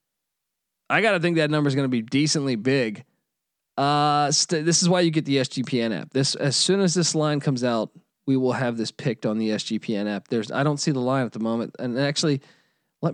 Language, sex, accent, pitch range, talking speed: English, male, American, 125-165 Hz, 230 wpm